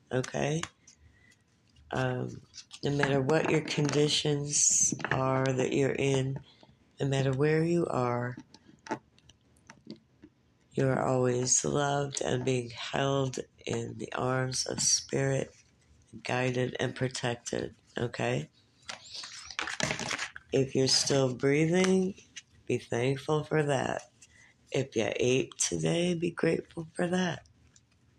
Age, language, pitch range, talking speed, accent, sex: 60-79, English, 125-150 Hz, 100 wpm, American, female